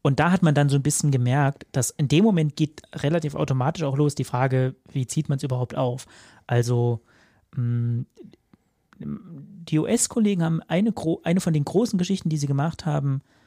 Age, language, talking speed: 30-49, German, 185 wpm